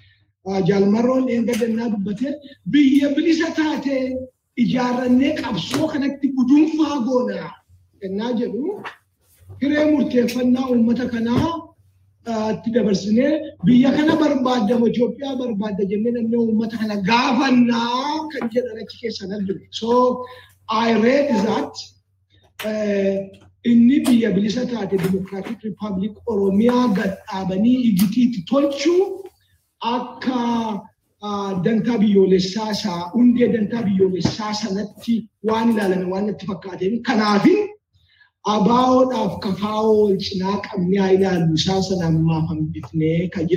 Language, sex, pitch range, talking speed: Swedish, male, 195-250 Hz, 50 wpm